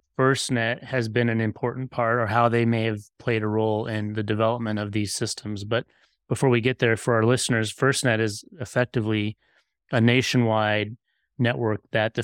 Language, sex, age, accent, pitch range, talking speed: English, male, 30-49, American, 105-120 Hz, 175 wpm